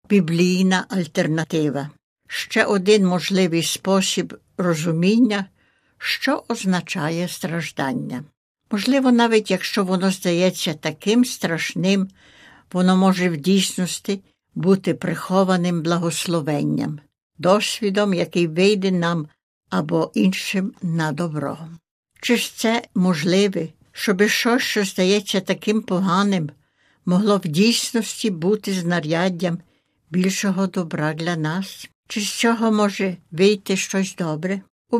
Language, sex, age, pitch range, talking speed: Ukrainian, female, 60-79, 170-205 Hz, 100 wpm